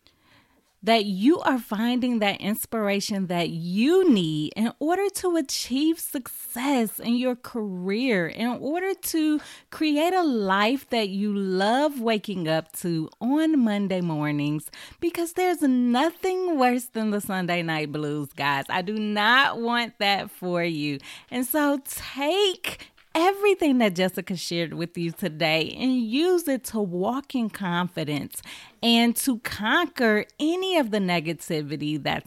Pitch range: 180-275 Hz